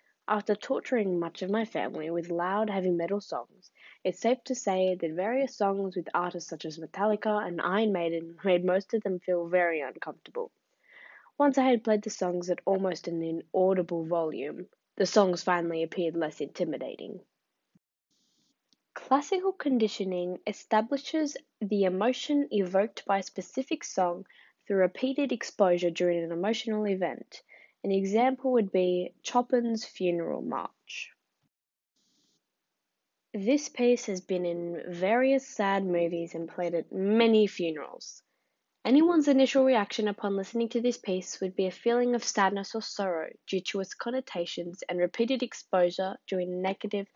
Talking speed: 145 wpm